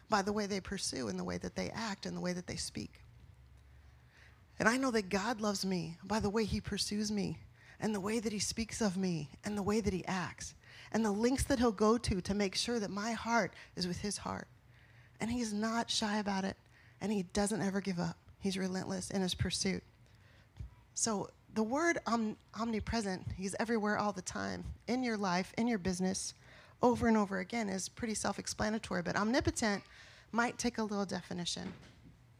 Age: 30-49